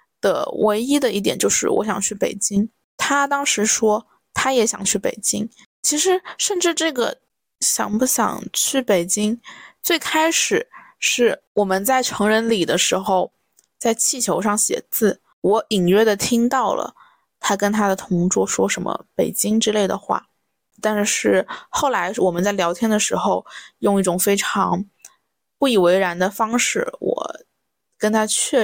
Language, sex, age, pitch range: Chinese, female, 20-39, 200-255 Hz